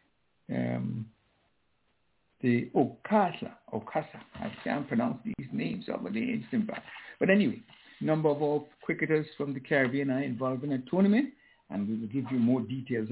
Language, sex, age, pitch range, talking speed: English, male, 60-79, 120-165 Hz, 155 wpm